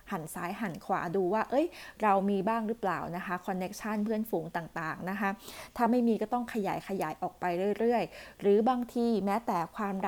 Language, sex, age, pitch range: Thai, female, 20-39, 190-235 Hz